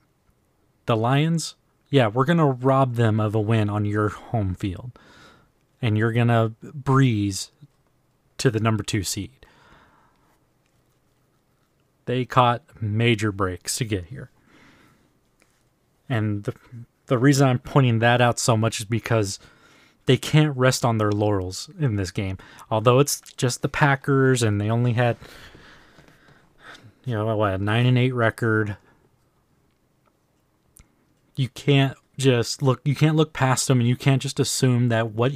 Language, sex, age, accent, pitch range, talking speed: English, male, 30-49, American, 115-140 Hz, 145 wpm